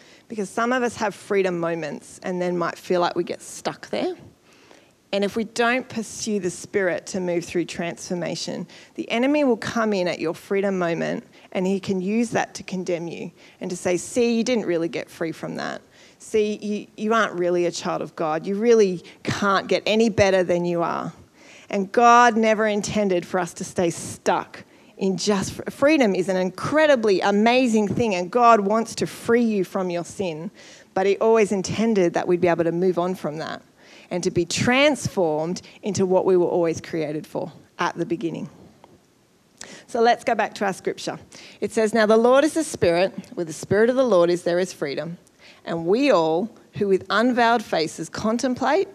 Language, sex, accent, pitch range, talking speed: English, female, Australian, 175-225 Hz, 195 wpm